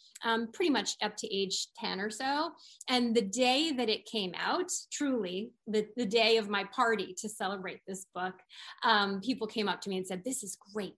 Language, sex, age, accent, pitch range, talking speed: English, female, 20-39, American, 195-245 Hz, 210 wpm